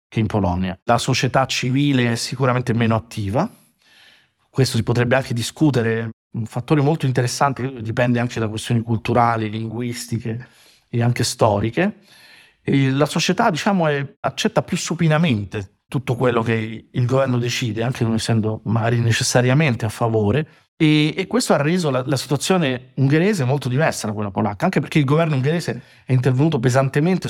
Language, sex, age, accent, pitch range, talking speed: Italian, male, 50-69, native, 115-135 Hz, 150 wpm